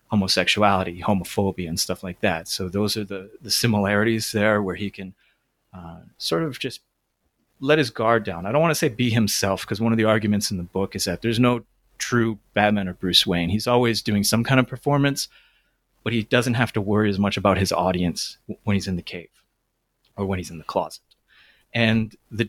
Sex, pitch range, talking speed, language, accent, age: male, 100-120 Hz, 210 wpm, English, American, 30-49